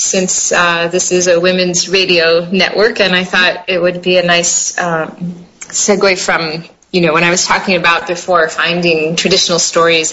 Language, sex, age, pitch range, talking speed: English, female, 30-49, 175-235 Hz, 180 wpm